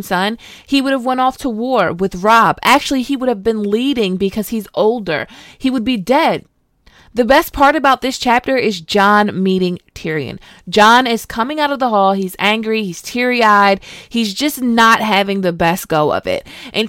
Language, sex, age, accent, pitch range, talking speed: English, female, 20-39, American, 190-255 Hz, 195 wpm